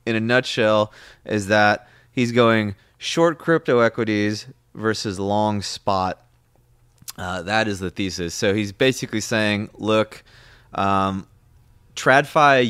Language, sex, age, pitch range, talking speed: English, male, 20-39, 95-115 Hz, 120 wpm